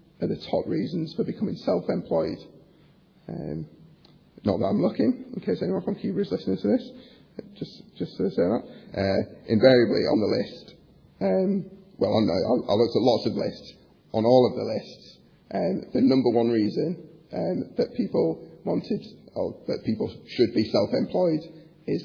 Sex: male